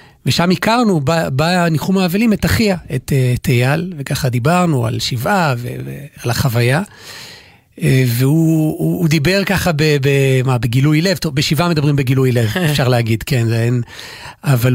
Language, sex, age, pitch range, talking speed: Hebrew, male, 40-59, 130-170 Hz, 130 wpm